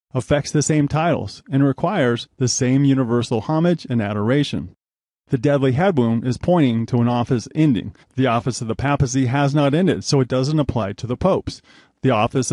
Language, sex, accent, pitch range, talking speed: English, male, American, 115-145 Hz, 185 wpm